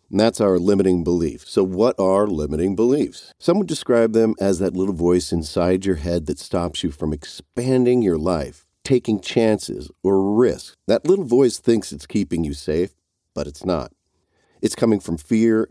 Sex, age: male, 50-69